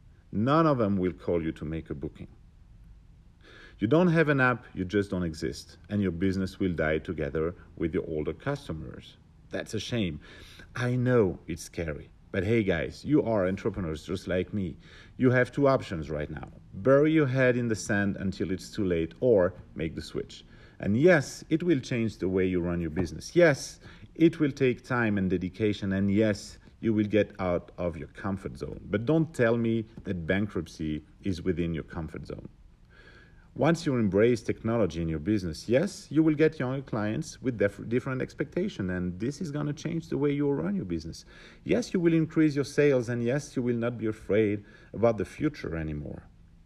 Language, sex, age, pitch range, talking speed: English, male, 50-69, 90-130 Hz, 190 wpm